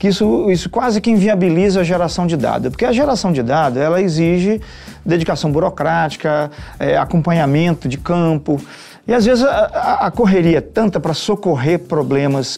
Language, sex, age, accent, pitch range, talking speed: Portuguese, male, 40-59, Brazilian, 140-180 Hz, 155 wpm